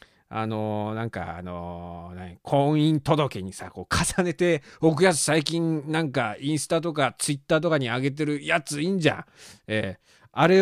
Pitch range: 110-170 Hz